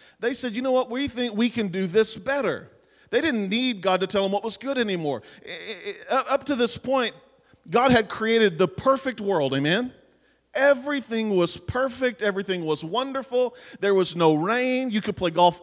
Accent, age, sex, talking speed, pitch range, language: American, 40-59, male, 185 wpm, 185-250 Hz, English